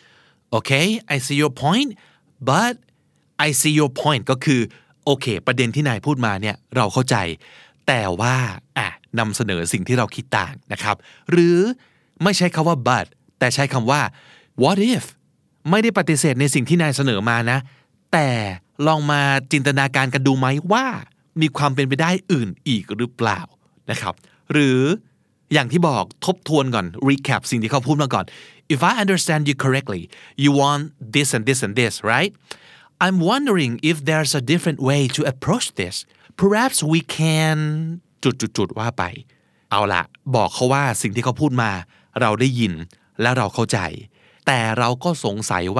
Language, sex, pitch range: Thai, male, 120-155 Hz